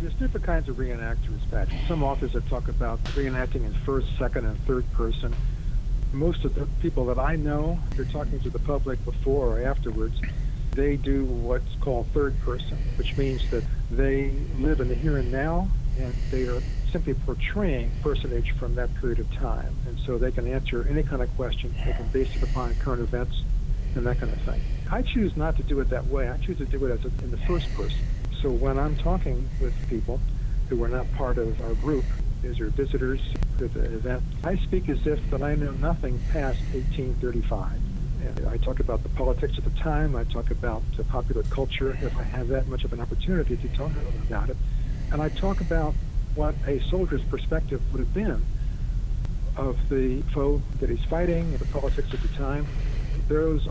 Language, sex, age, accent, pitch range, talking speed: English, male, 60-79, American, 120-140 Hz, 200 wpm